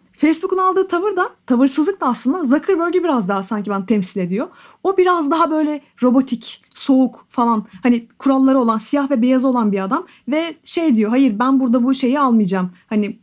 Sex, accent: female, native